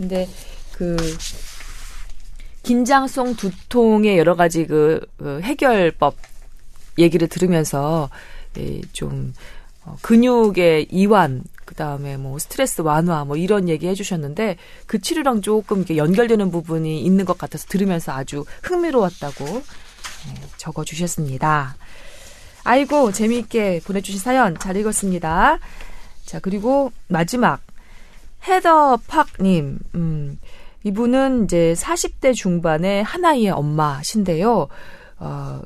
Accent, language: native, Korean